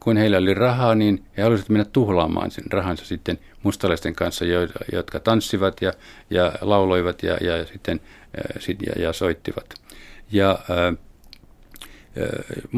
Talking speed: 130 wpm